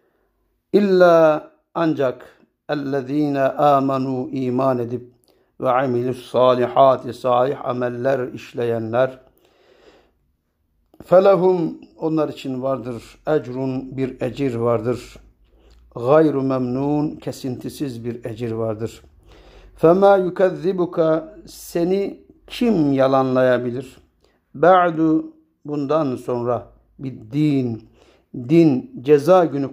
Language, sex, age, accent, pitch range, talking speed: Turkish, male, 60-79, native, 125-160 Hz, 80 wpm